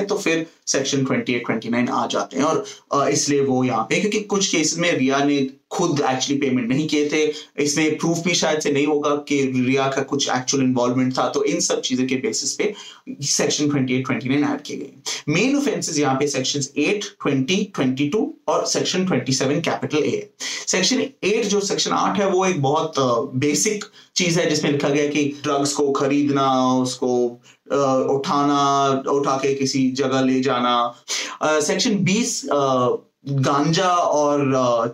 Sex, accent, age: male, native, 30-49